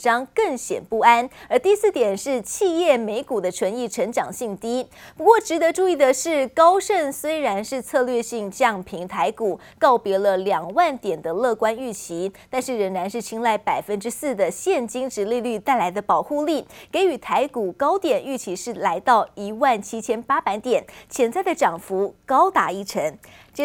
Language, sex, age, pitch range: Chinese, female, 20-39, 215-300 Hz